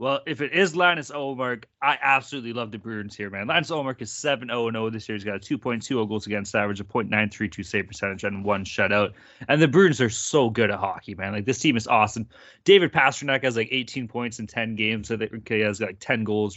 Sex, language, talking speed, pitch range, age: male, English, 230 wpm, 105-145 Hz, 20-39